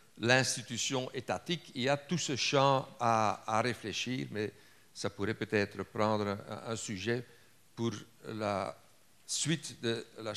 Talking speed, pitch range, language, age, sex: 135 wpm, 105-130 Hz, French, 60-79, male